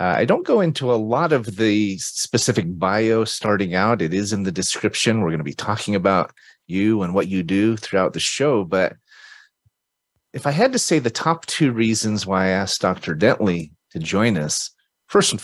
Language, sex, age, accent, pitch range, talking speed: English, male, 30-49, American, 90-110 Hz, 200 wpm